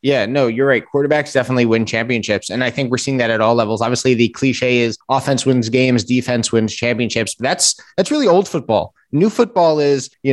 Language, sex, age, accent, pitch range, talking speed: English, male, 20-39, American, 115-140 Hz, 215 wpm